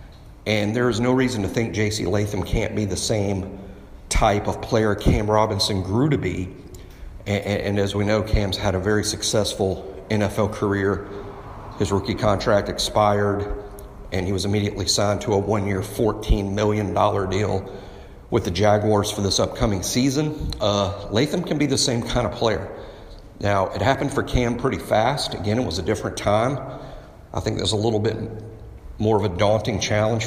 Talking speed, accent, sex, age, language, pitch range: 175 wpm, American, male, 50-69, English, 100-115 Hz